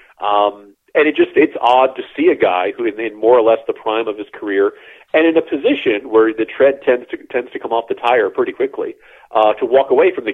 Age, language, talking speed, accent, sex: 40-59, English, 255 wpm, American, male